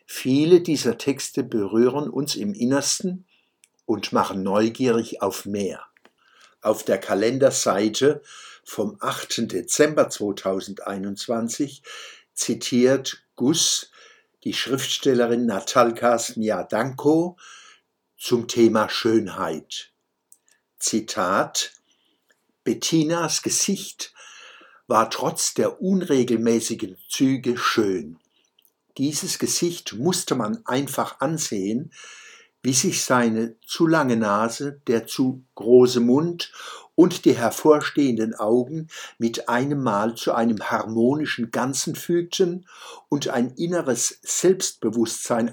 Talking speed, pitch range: 90 wpm, 115-160 Hz